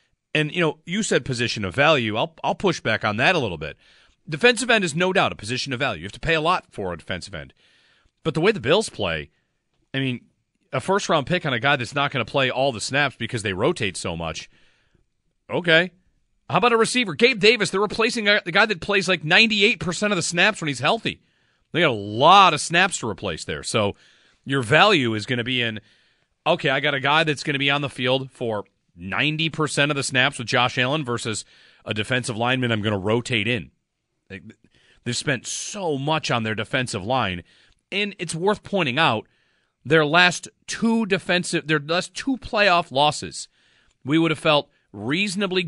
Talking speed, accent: 210 wpm, American